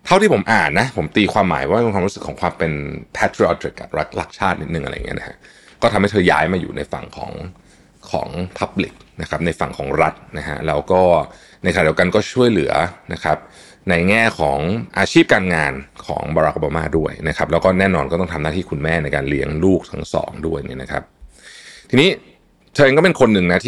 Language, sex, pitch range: Thai, male, 80-100 Hz